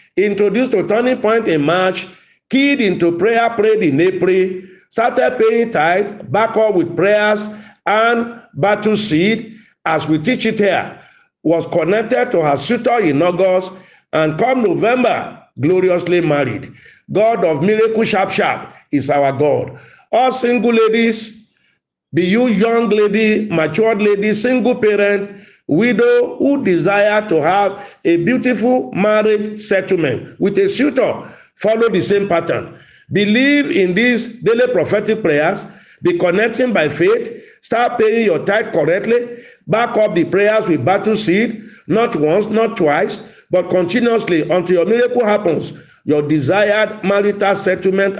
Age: 50-69